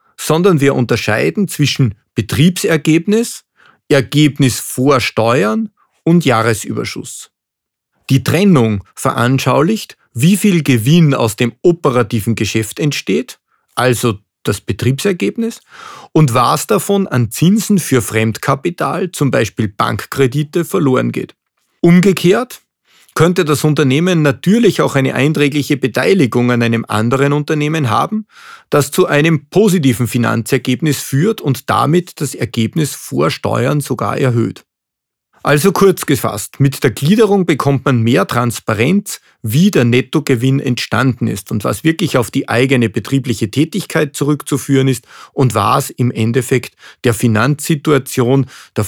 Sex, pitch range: male, 120-165 Hz